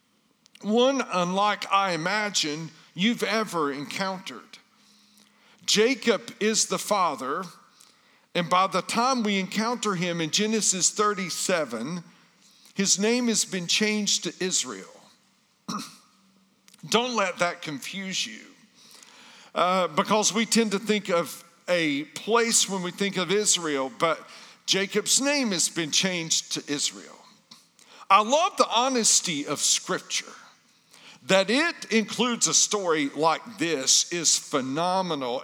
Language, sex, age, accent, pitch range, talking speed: English, male, 50-69, American, 175-225 Hz, 120 wpm